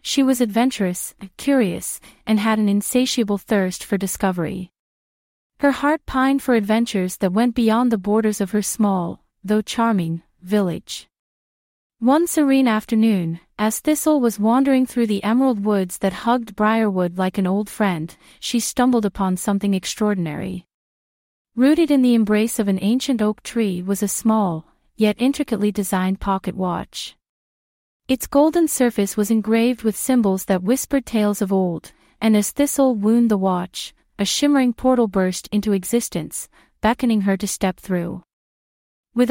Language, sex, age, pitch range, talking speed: English, female, 30-49, 195-245 Hz, 150 wpm